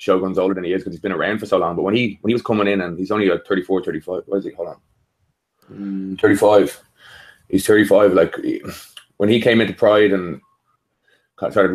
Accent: Irish